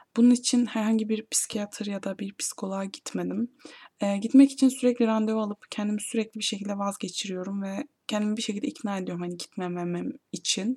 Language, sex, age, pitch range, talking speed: Turkish, female, 20-39, 195-235 Hz, 165 wpm